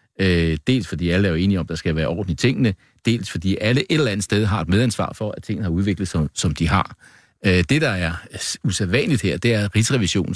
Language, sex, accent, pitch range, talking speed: Danish, male, native, 90-115 Hz, 245 wpm